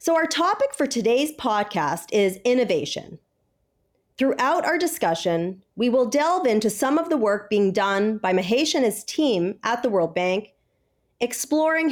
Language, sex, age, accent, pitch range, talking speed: English, female, 40-59, American, 185-275 Hz, 155 wpm